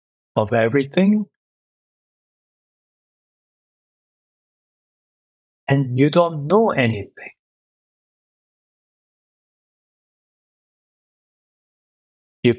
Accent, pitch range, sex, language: American, 120-160 Hz, male, English